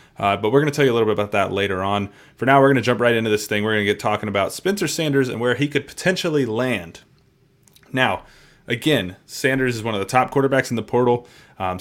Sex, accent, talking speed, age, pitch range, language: male, American, 260 wpm, 30-49, 105-125 Hz, English